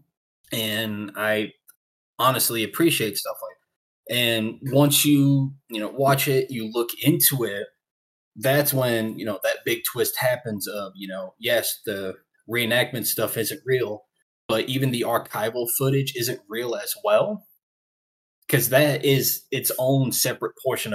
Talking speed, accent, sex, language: 145 wpm, American, male, English